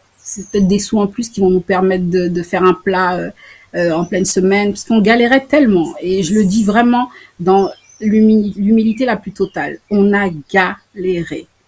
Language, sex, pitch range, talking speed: French, female, 170-205 Hz, 190 wpm